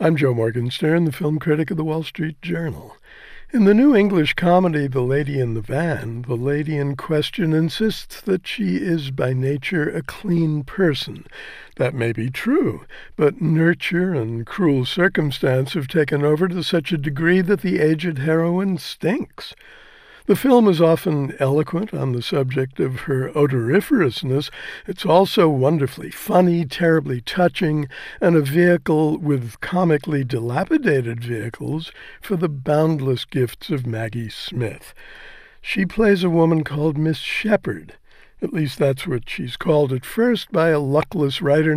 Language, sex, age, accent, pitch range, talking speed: English, male, 60-79, American, 135-175 Hz, 150 wpm